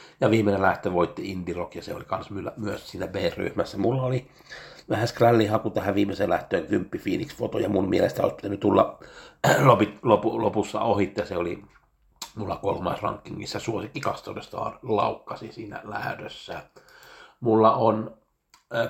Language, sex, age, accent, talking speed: Finnish, male, 60-79, native, 140 wpm